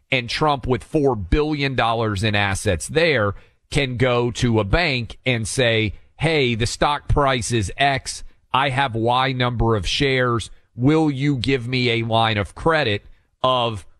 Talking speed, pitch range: 155 wpm, 100-145 Hz